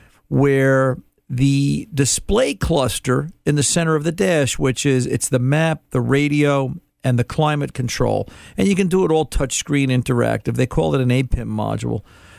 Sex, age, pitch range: male, 50-69, 120-150 Hz